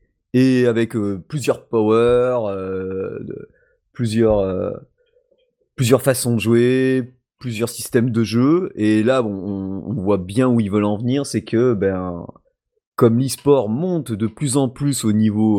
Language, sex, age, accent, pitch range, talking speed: French, male, 30-49, French, 95-125 Hz, 160 wpm